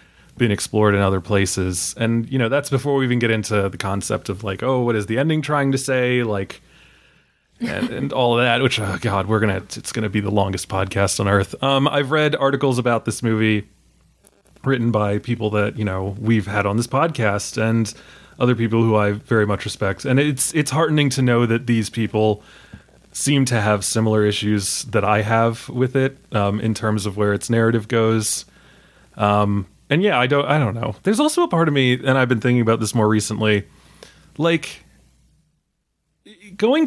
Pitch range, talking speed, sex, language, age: 105-130 Hz, 200 wpm, male, English, 20-39